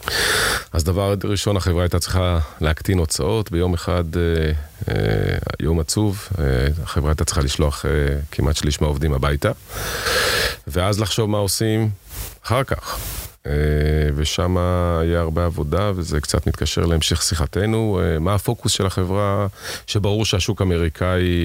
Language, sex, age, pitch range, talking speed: Hebrew, male, 30-49, 80-100 Hz, 135 wpm